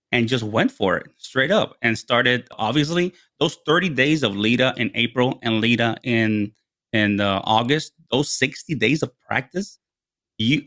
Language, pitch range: English, 115-150 Hz